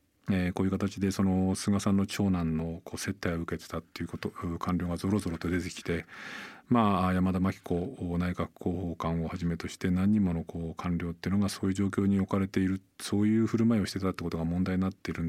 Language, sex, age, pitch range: Japanese, male, 40-59, 90-115 Hz